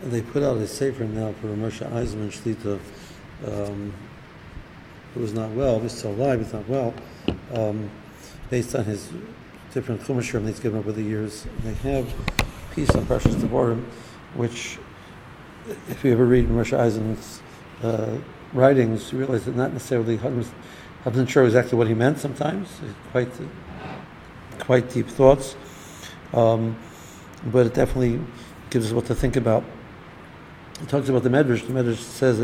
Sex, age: male, 60-79